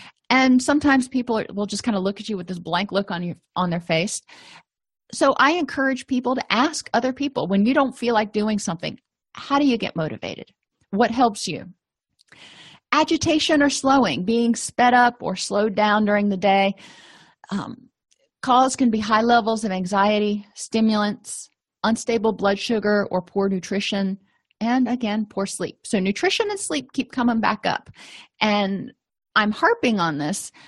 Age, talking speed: 30-49, 170 wpm